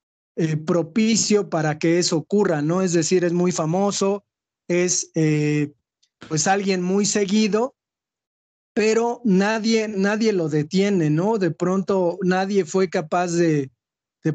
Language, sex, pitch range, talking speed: Spanish, male, 160-200 Hz, 130 wpm